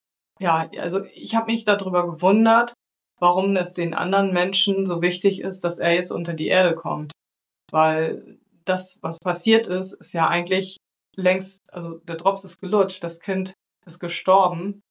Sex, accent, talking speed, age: female, German, 160 wpm, 30-49